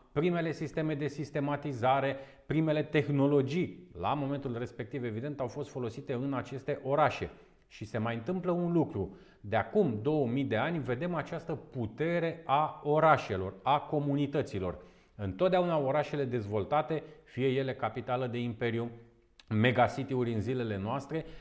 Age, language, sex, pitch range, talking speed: 40-59, Romanian, male, 125-160 Hz, 130 wpm